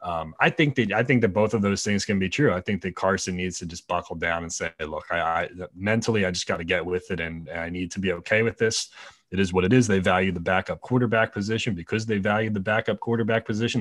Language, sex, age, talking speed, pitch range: English, male, 30-49, 275 wpm, 90-120 Hz